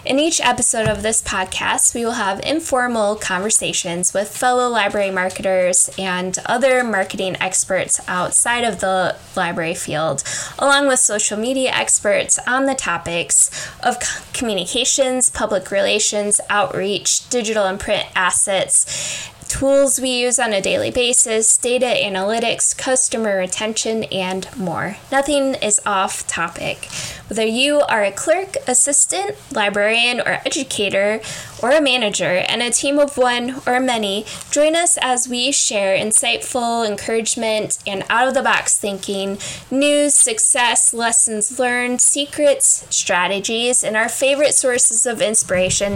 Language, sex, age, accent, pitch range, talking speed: English, female, 10-29, American, 200-260 Hz, 130 wpm